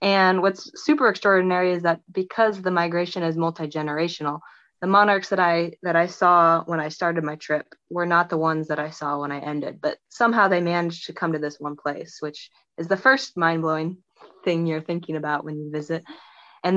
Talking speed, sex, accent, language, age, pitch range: 200 wpm, female, American, English, 20-39, 155-185 Hz